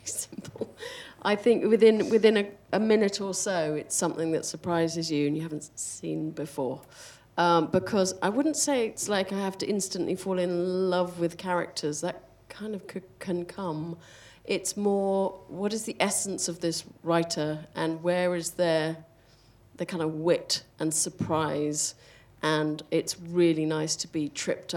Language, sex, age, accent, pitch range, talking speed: English, female, 40-59, British, 155-195 Hz, 165 wpm